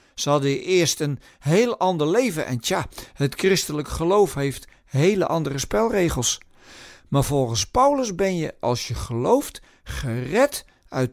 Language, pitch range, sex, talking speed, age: Dutch, 135-190 Hz, male, 140 wpm, 50-69